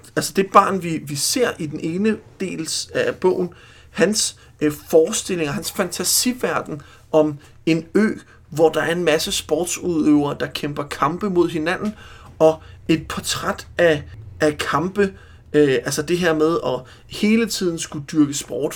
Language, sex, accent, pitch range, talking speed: Danish, male, native, 145-175 Hz, 155 wpm